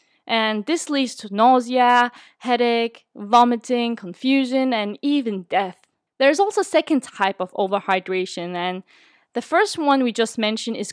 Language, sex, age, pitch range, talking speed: English, female, 20-39, 205-275 Hz, 150 wpm